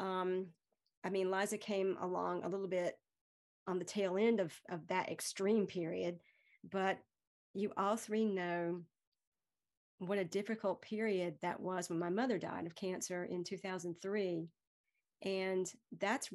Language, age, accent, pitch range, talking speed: English, 40-59, American, 180-210 Hz, 145 wpm